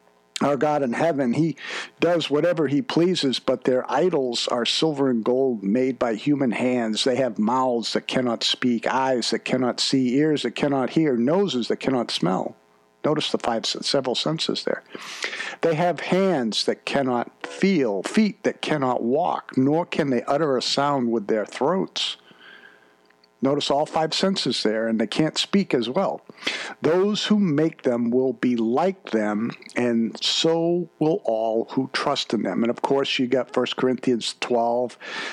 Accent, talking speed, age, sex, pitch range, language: American, 165 wpm, 50-69, male, 115-140 Hz, English